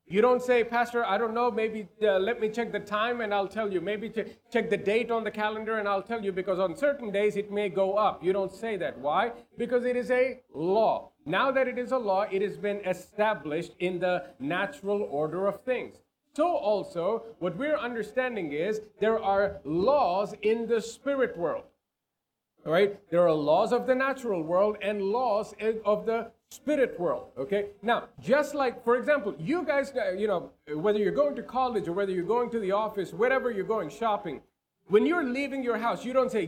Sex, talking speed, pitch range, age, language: male, 205 wpm, 195-245 Hz, 40-59, English